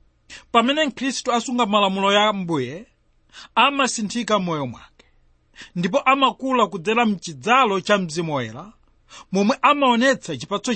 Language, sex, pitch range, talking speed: English, male, 175-245 Hz, 110 wpm